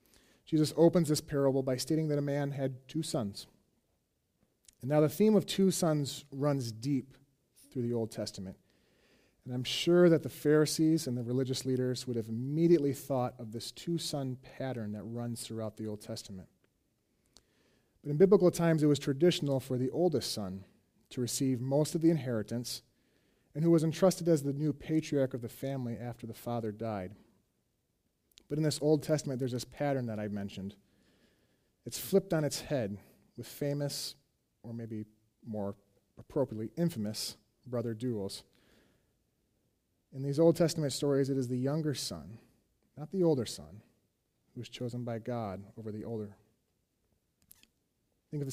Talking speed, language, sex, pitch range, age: 160 wpm, English, male, 110-145 Hz, 30-49